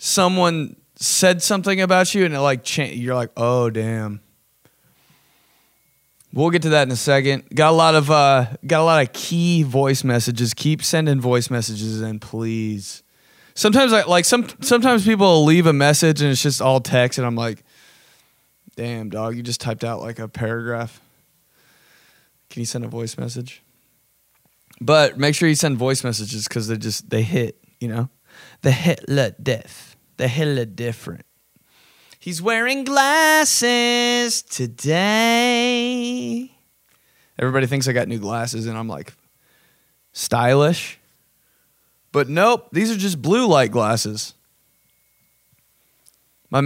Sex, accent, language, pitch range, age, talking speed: male, American, English, 115-165 Hz, 20-39, 145 wpm